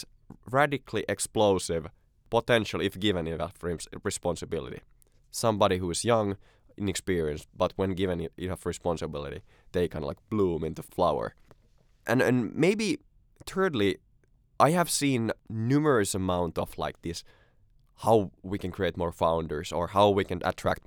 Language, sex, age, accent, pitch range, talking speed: Finnish, male, 20-39, native, 85-110 Hz, 135 wpm